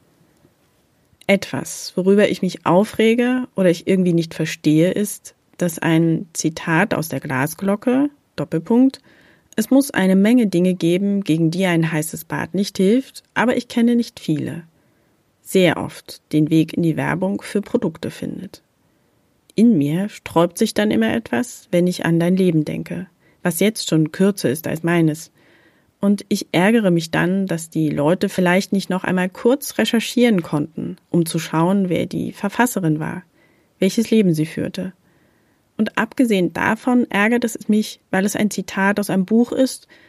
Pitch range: 160-205 Hz